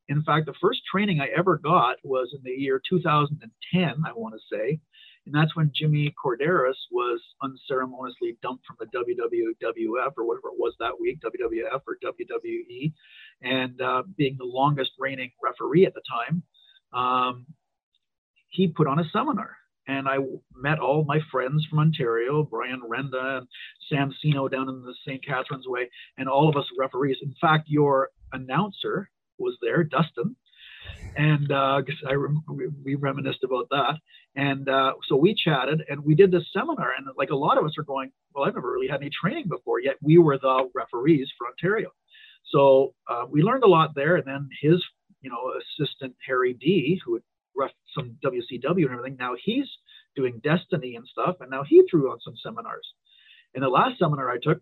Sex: male